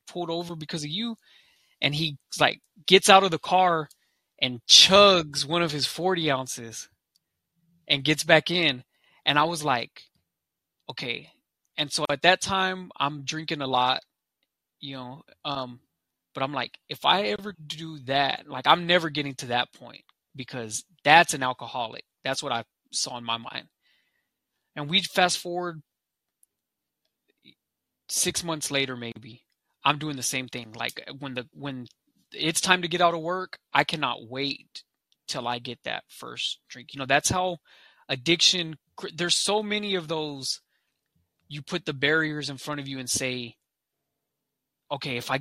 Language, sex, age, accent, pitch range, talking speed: English, male, 20-39, American, 130-170 Hz, 165 wpm